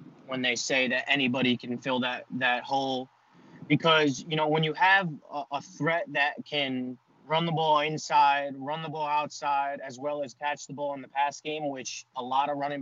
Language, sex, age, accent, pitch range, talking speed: English, male, 20-39, American, 140-165 Hz, 200 wpm